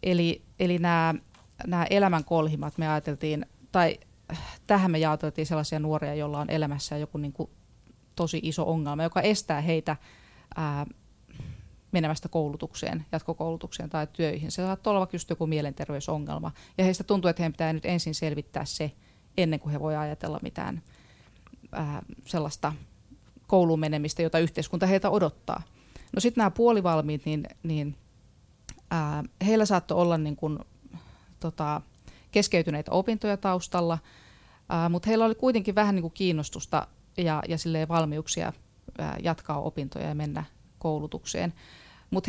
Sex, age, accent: female, 30-49, native